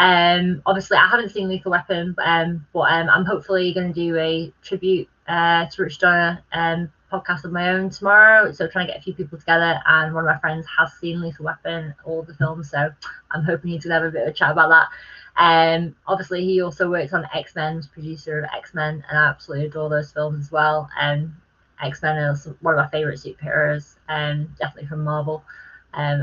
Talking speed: 215 wpm